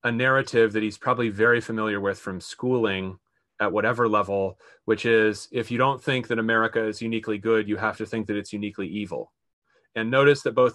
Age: 30-49